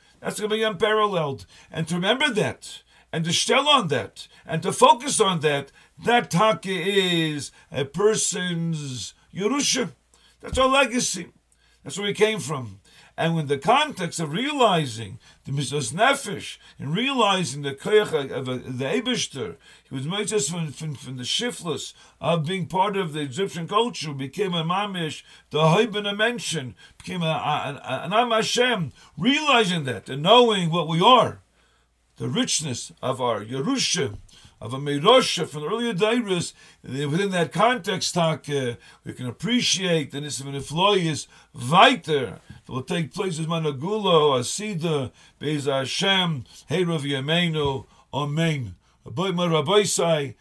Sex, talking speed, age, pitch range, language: male, 135 wpm, 50-69, 140-205 Hz, English